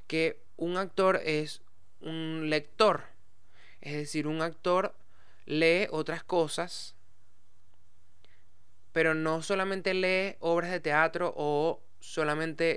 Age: 20-39